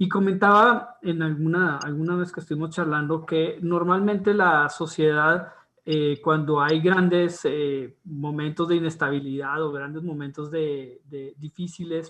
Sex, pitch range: male, 145-170 Hz